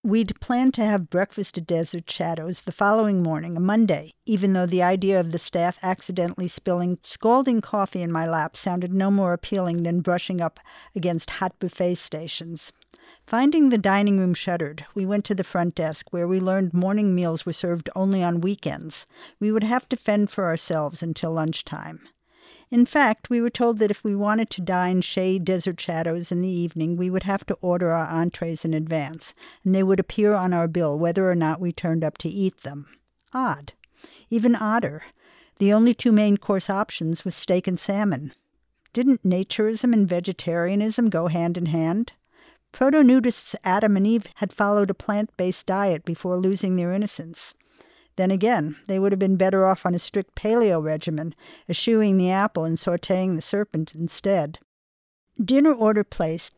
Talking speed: 180 wpm